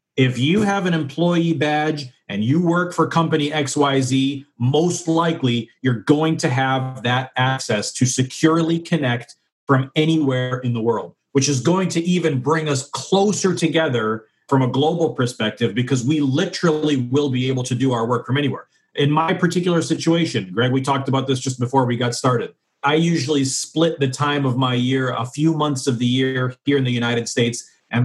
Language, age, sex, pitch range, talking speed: English, 40-59, male, 125-160 Hz, 185 wpm